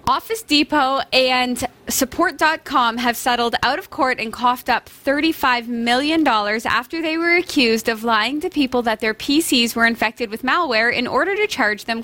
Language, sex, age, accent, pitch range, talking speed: English, female, 20-39, American, 230-305 Hz, 170 wpm